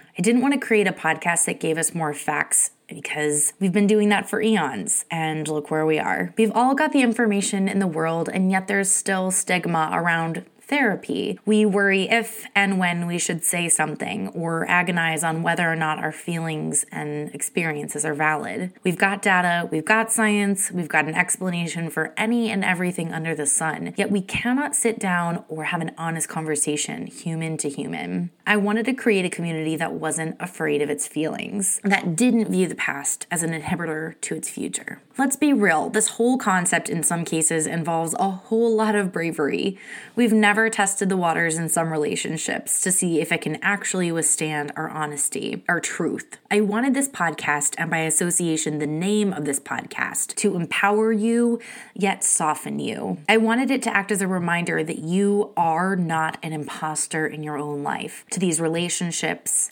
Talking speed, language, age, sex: 185 wpm, English, 20-39, female